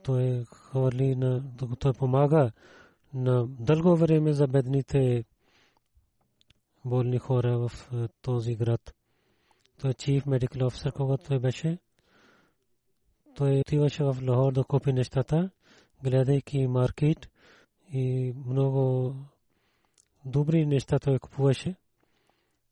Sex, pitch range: male, 125-145 Hz